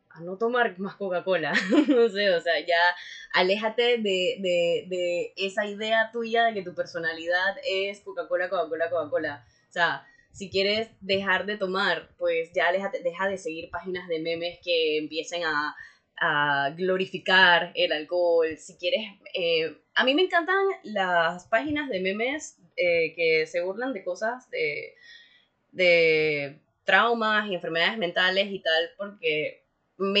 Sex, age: female, 20-39